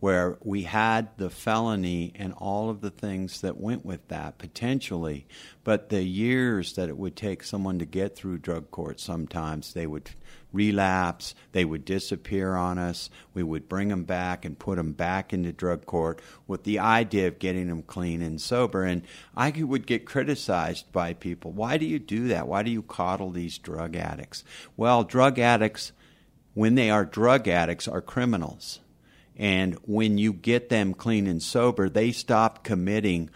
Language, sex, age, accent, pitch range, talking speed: English, male, 50-69, American, 90-115 Hz, 175 wpm